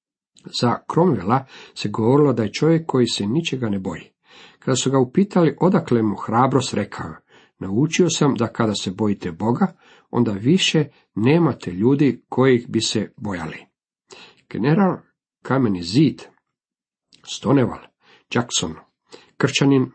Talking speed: 125 wpm